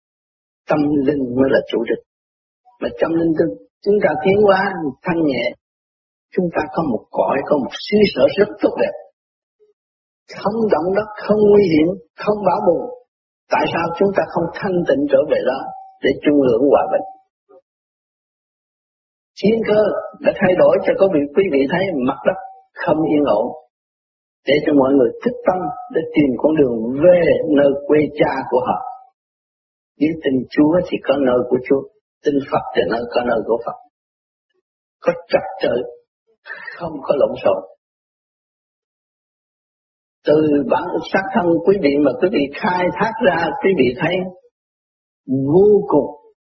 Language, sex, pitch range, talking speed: Vietnamese, male, 145-245 Hz, 160 wpm